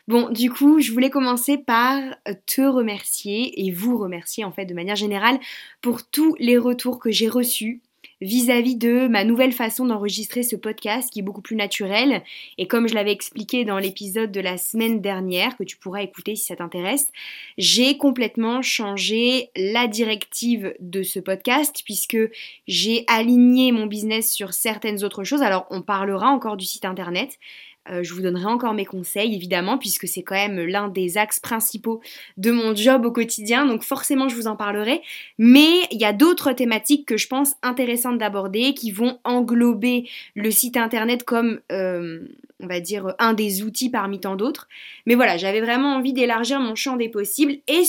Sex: female